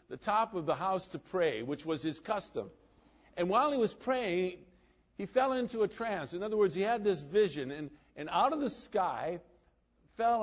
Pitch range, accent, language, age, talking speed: 130-200 Hz, American, English, 50-69, 200 wpm